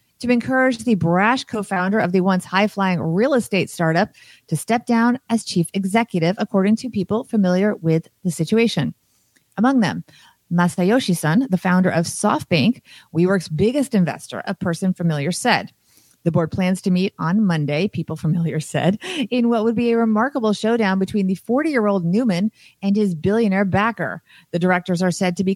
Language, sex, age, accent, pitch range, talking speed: English, female, 30-49, American, 185-230 Hz, 165 wpm